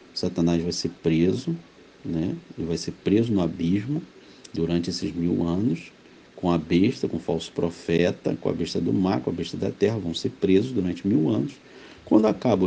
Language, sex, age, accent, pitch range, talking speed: Portuguese, male, 50-69, Brazilian, 90-135 Hz, 190 wpm